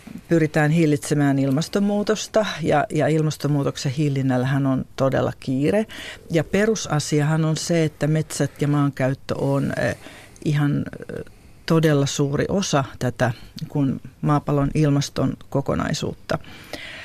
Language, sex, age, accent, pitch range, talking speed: Finnish, female, 40-59, native, 140-165 Hz, 100 wpm